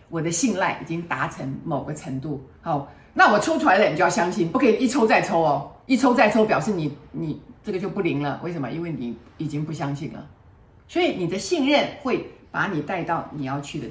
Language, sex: Chinese, female